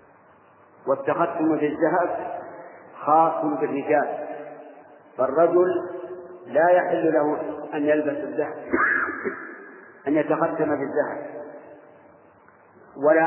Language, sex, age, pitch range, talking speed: Arabic, male, 50-69, 145-160 Hz, 70 wpm